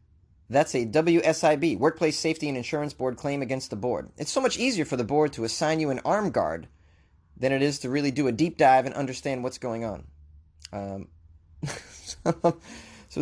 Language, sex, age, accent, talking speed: English, male, 20-39, American, 185 wpm